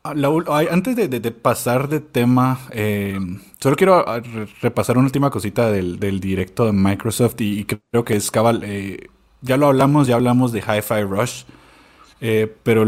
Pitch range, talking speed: 115-150 Hz, 165 wpm